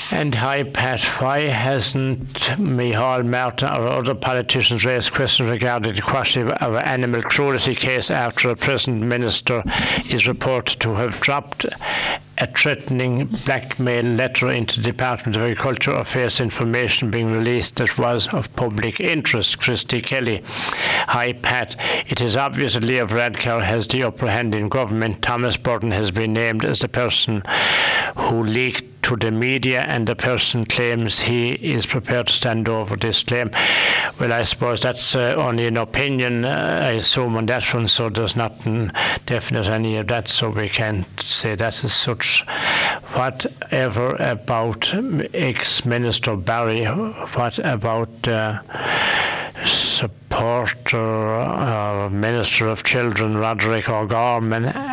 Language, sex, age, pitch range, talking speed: English, male, 60-79, 115-125 Hz, 140 wpm